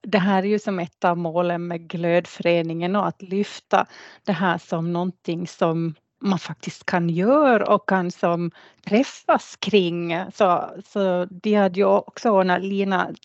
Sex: female